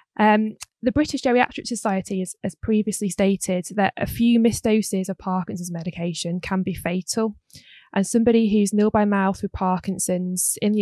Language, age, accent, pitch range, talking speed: English, 10-29, British, 185-215 Hz, 165 wpm